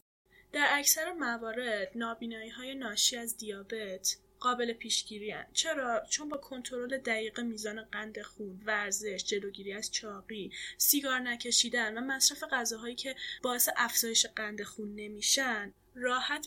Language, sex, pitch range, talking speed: Persian, female, 215-275 Hz, 125 wpm